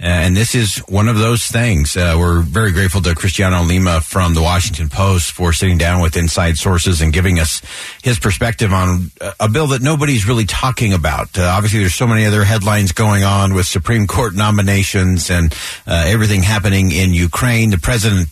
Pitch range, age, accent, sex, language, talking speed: 90-110 Hz, 50-69, American, male, English, 190 wpm